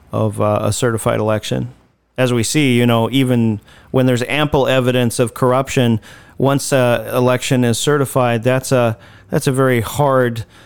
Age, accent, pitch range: 40-59, American, 115-135 Hz